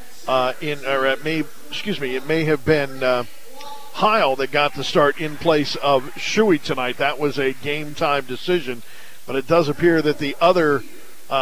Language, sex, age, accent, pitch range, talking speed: English, male, 50-69, American, 155-210 Hz, 185 wpm